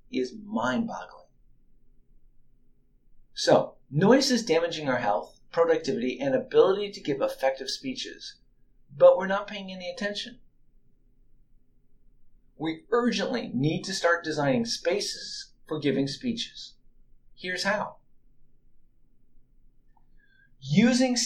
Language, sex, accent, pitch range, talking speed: English, male, American, 135-225 Hz, 95 wpm